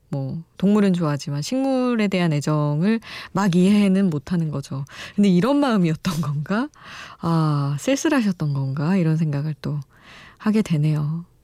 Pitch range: 155-215 Hz